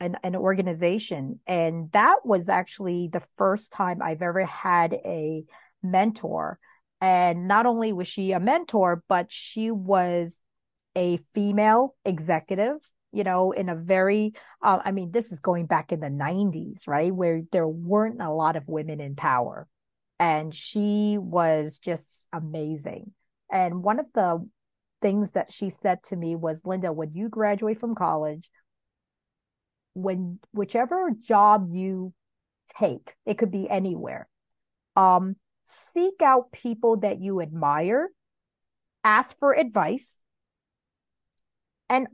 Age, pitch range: 40-59, 175-220 Hz